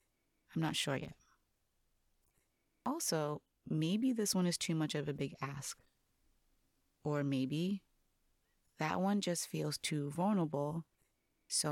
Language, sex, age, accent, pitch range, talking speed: English, female, 30-49, American, 140-180 Hz, 125 wpm